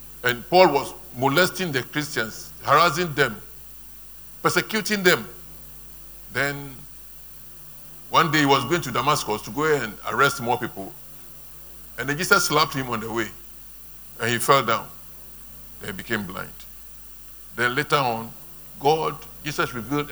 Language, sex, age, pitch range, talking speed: English, male, 60-79, 115-170 Hz, 135 wpm